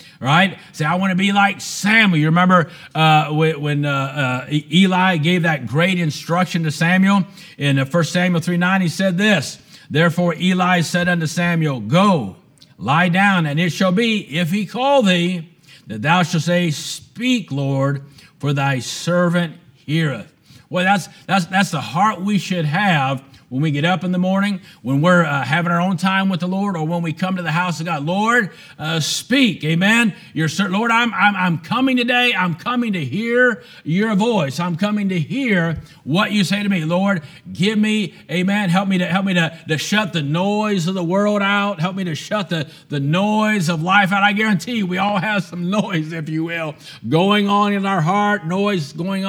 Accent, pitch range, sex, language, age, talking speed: American, 160-200 Hz, male, English, 50-69, 195 wpm